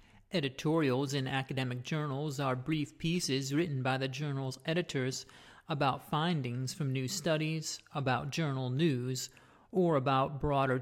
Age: 40-59